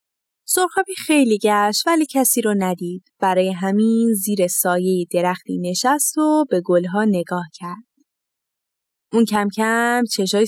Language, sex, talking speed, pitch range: Persian, female, 125 wpm, 185-275 Hz